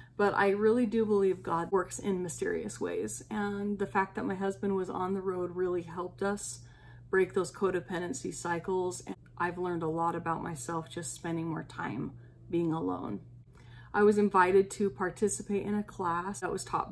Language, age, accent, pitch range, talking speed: English, 30-49, American, 160-195 Hz, 180 wpm